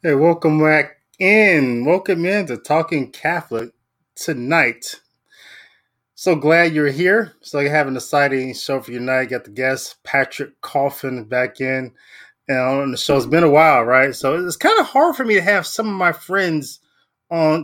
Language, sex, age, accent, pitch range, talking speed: English, male, 20-39, American, 140-195 Hz, 190 wpm